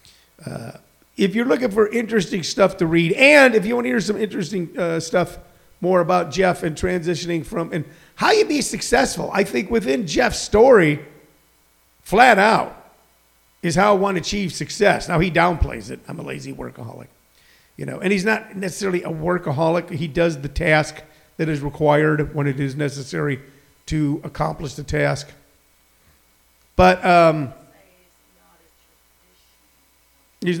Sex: male